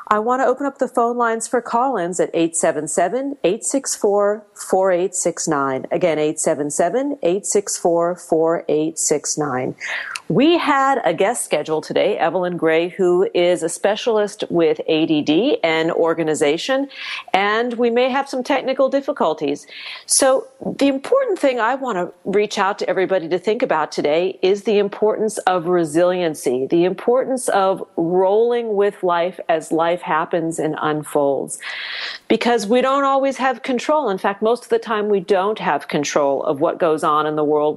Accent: American